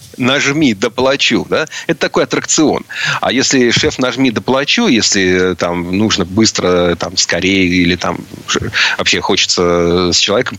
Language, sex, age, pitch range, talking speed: Russian, male, 30-49, 90-115 Hz, 130 wpm